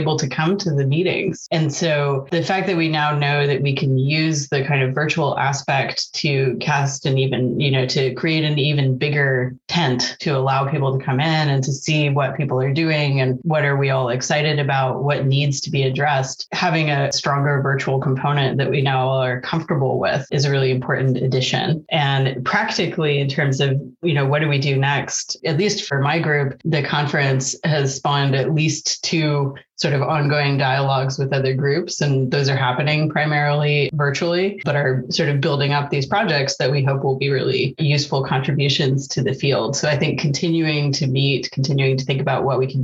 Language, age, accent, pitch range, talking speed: English, 30-49, American, 135-150 Hz, 205 wpm